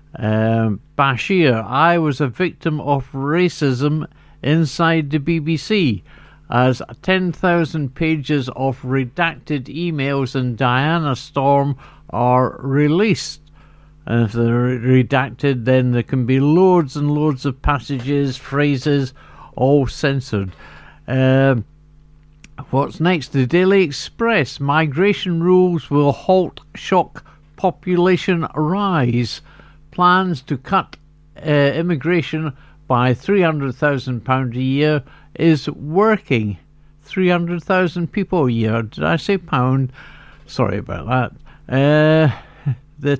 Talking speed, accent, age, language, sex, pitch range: 105 wpm, British, 60-79, English, male, 130-165 Hz